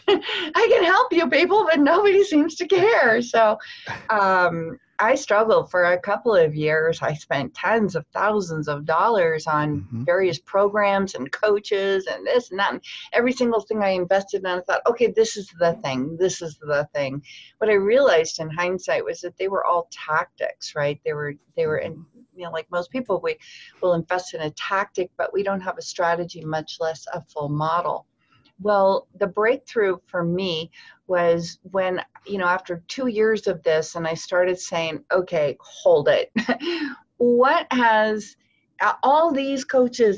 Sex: female